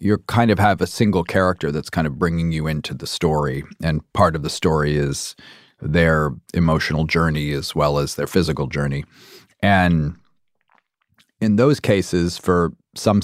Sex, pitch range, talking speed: male, 80-105 Hz, 165 wpm